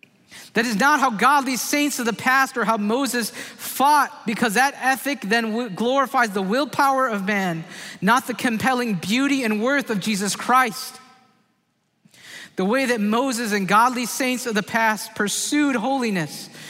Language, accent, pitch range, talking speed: English, American, 165-240 Hz, 155 wpm